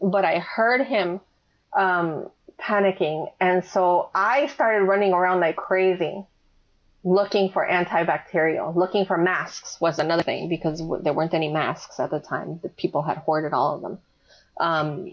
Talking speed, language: 155 wpm, English